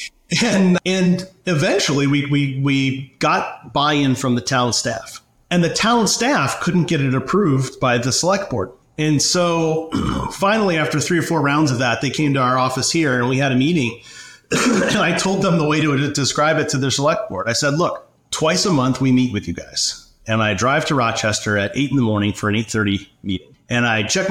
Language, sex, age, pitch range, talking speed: English, male, 30-49, 120-160 Hz, 210 wpm